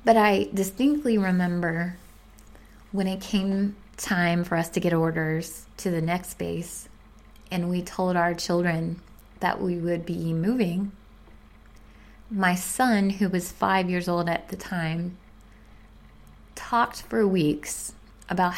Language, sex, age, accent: English, female, 20-39, American